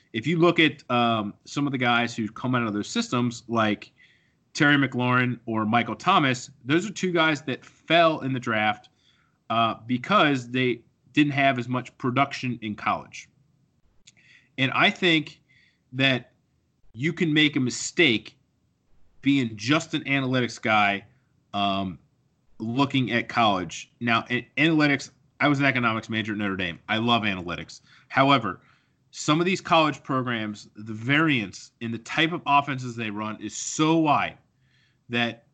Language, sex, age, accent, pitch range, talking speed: English, male, 30-49, American, 110-140 Hz, 150 wpm